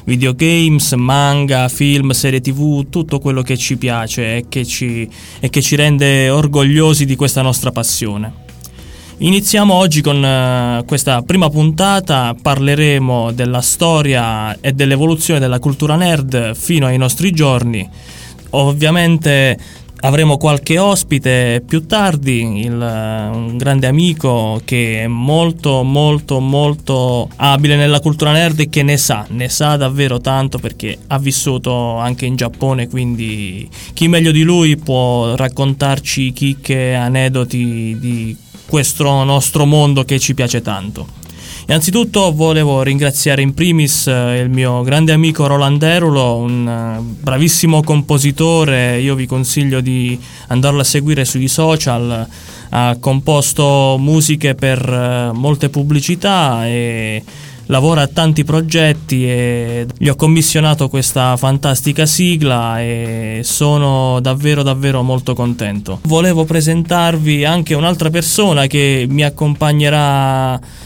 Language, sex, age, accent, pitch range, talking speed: Italian, male, 20-39, native, 125-150 Hz, 120 wpm